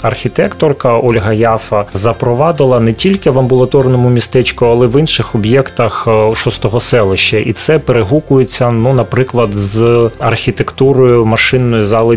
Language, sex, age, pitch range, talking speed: Ukrainian, male, 30-49, 110-135 Hz, 125 wpm